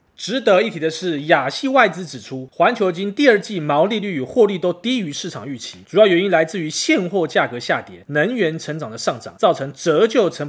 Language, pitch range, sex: Chinese, 155-215 Hz, male